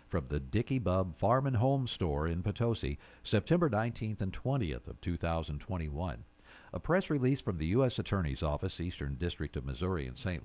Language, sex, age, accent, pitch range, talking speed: English, male, 60-79, American, 80-115 Hz, 170 wpm